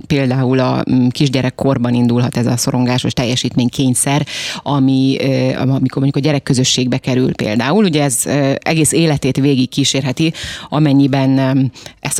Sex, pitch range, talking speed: female, 135-165 Hz, 115 wpm